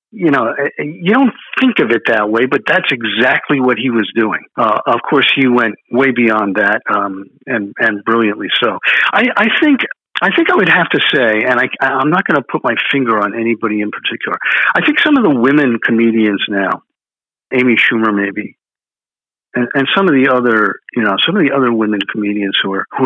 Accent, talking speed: American, 210 wpm